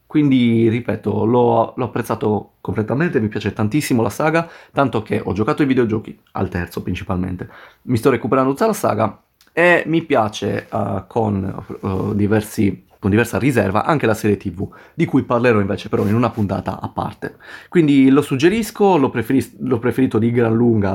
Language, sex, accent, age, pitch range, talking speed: Italian, male, native, 30-49, 105-140 Hz, 170 wpm